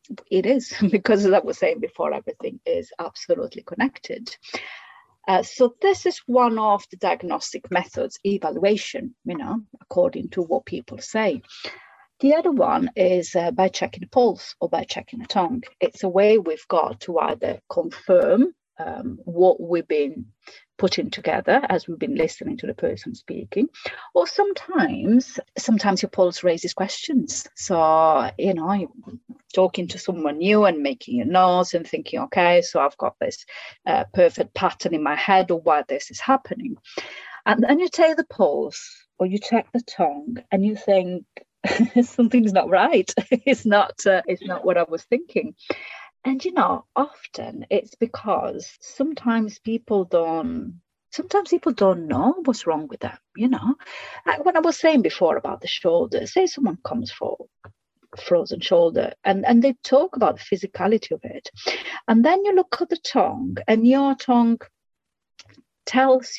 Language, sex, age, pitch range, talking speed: English, female, 30-49, 195-275 Hz, 165 wpm